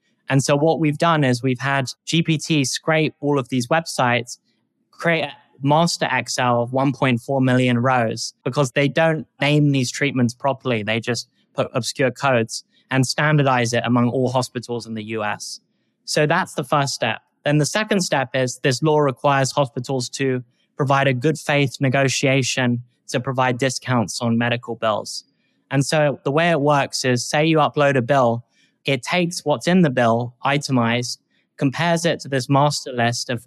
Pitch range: 120-145 Hz